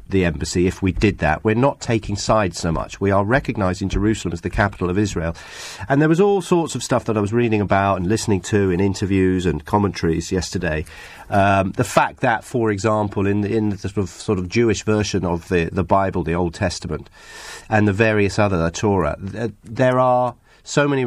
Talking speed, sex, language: 210 wpm, male, English